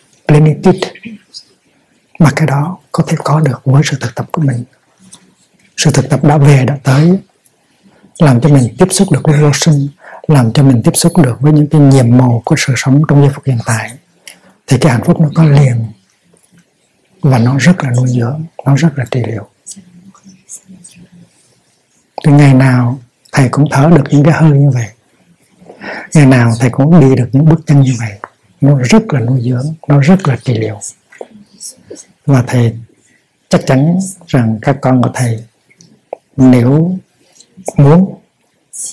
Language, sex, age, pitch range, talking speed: Vietnamese, male, 60-79, 125-165 Hz, 170 wpm